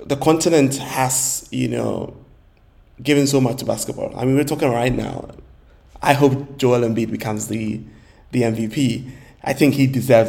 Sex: male